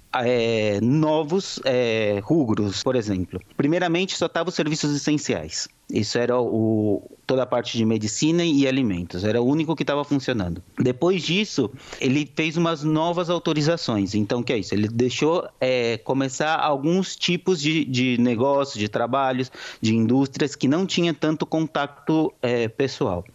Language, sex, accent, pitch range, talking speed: Portuguese, male, Brazilian, 115-155 Hz, 150 wpm